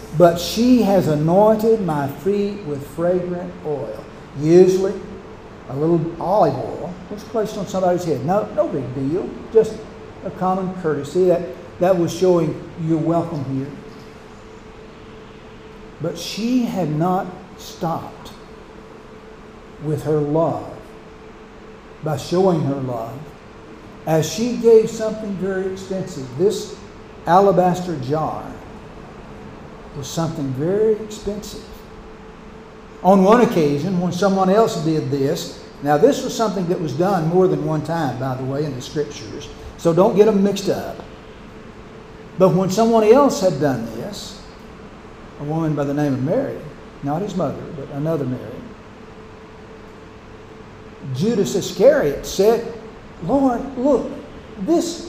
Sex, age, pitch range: male, 60-79, 155-215 Hz